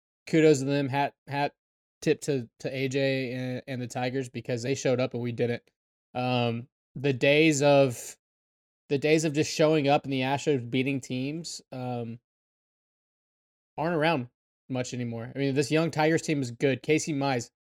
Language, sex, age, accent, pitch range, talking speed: English, male, 20-39, American, 130-150 Hz, 170 wpm